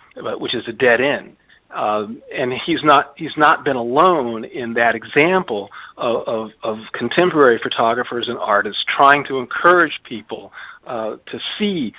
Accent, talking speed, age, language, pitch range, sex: American, 150 wpm, 50-69, English, 120-160 Hz, male